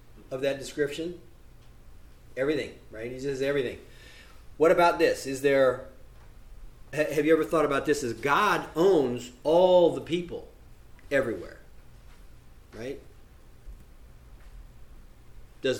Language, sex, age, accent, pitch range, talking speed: English, male, 40-59, American, 125-170 Hz, 105 wpm